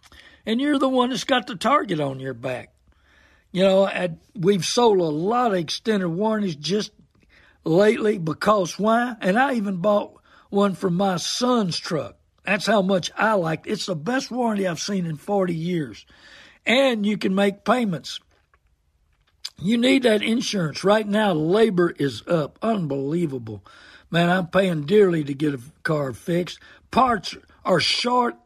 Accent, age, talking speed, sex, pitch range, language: American, 60-79, 160 wpm, male, 165-215 Hz, English